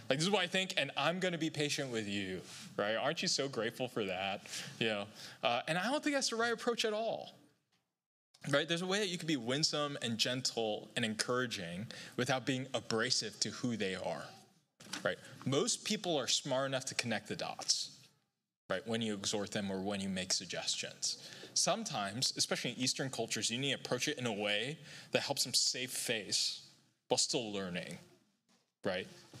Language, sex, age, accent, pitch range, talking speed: English, male, 20-39, American, 115-165 Hz, 195 wpm